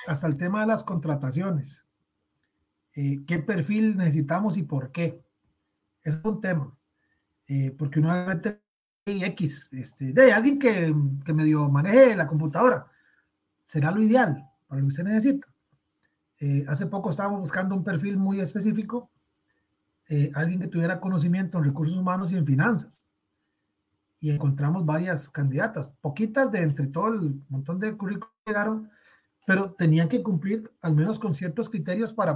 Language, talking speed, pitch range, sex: Spanish, 145 wpm, 150-220 Hz, male